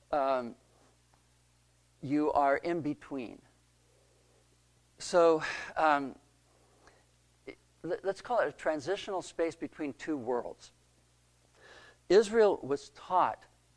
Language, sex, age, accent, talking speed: English, male, 60-79, American, 80 wpm